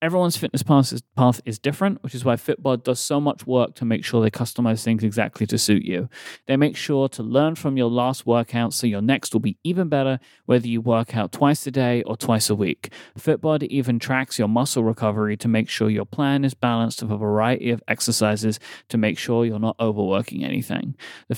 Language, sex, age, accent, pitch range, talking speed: English, male, 30-49, British, 110-140 Hz, 215 wpm